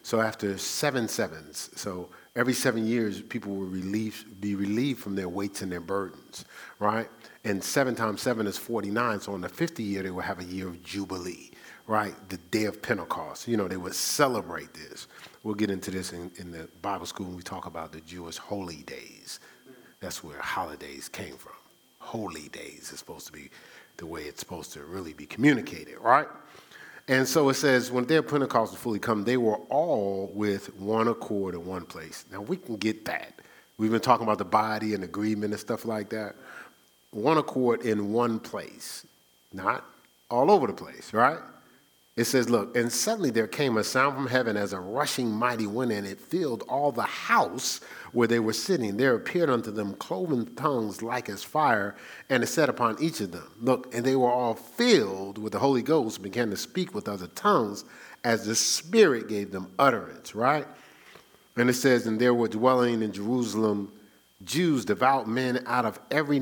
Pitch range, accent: 100-125 Hz, American